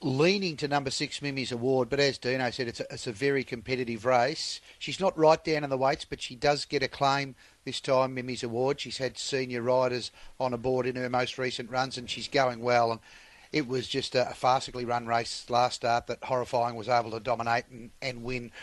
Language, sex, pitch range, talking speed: English, male, 120-135 Hz, 220 wpm